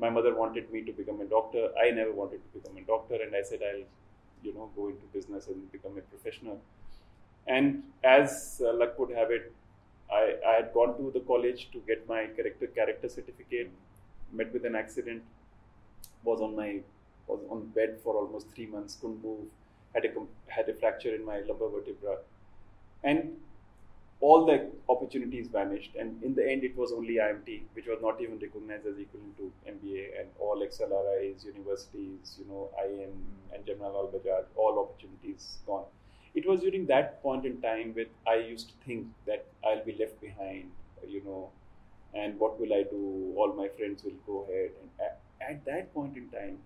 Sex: male